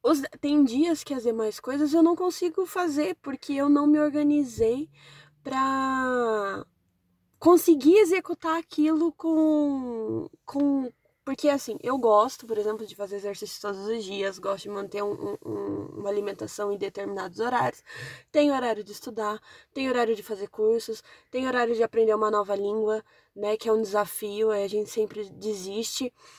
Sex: female